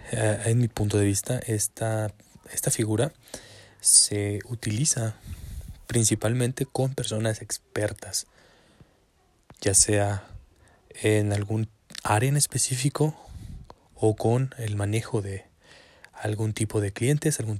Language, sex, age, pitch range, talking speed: Spanish, male, 20-39, 105-120 Hz, 110 wpm